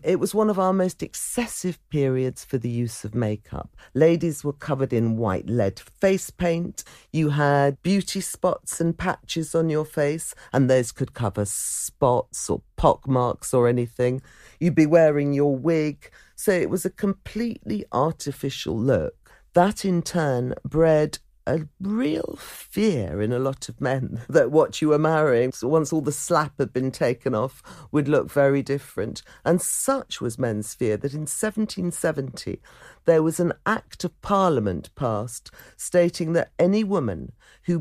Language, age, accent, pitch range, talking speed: English, 50-69, British, 130-175 Hz, 160 wpm